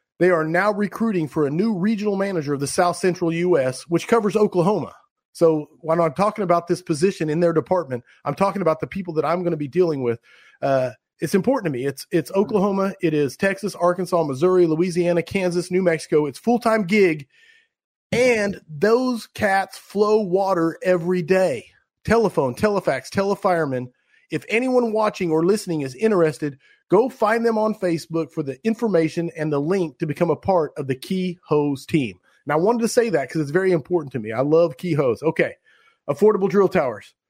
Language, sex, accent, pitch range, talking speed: English, male, American, 155-200 Hz, 185 wpm